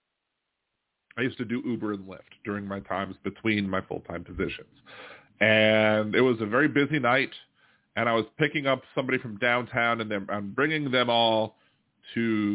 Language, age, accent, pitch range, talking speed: English, 40-59, American, 100-130 Hz, 165 wpm